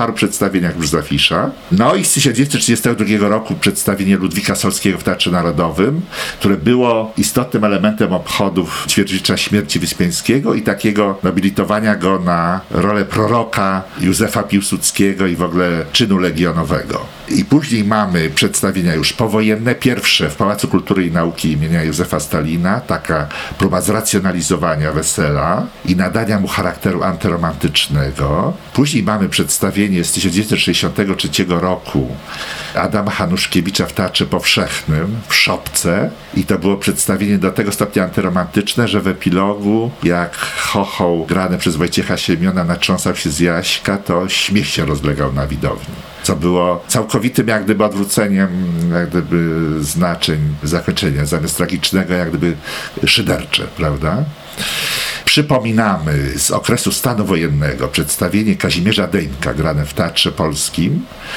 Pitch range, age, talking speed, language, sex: 85-105 Hz, 50-69, 125 wpm, Polish, male